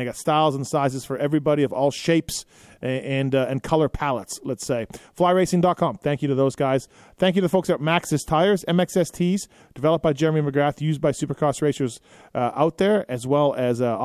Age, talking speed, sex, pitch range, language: 30-49, 200 wpm, male, 125-155 Hz, English